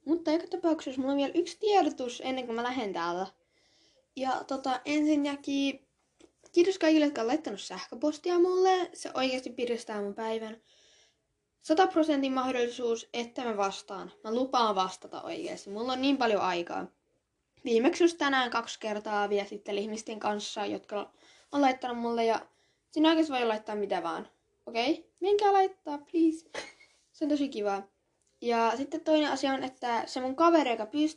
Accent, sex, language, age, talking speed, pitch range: native, female, Finnish, 10-29, 155 wpm, 230-325 Hz